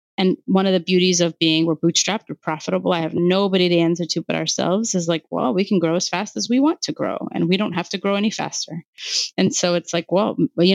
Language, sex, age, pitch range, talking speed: English, female, 30-49, 165-195 Hz, 255 wpm